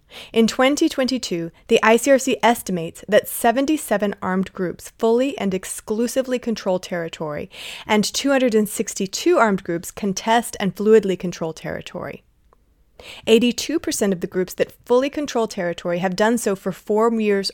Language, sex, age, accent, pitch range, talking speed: English, female, 30-49, American, 185-235 Hz, 125 wpm